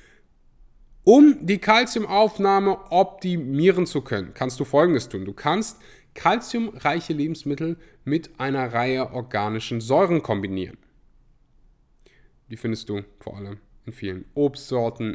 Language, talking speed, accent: German, 110 wpm, German